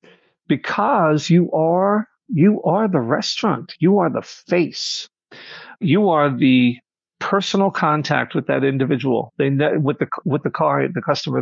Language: English